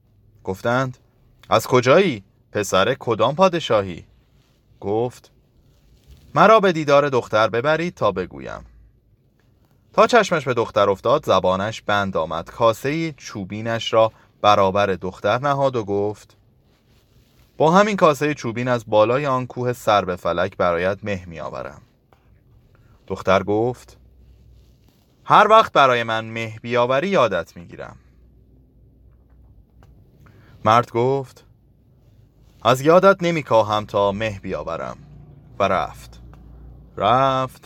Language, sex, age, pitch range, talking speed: Persian, male, 30-49, 100-130 Hz, 105 wpm